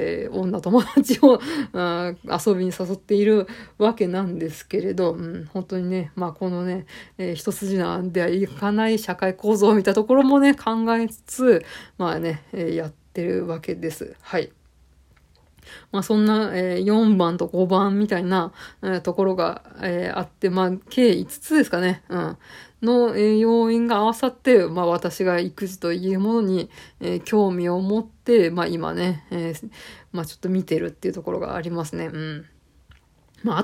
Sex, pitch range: female, 180-220 Hz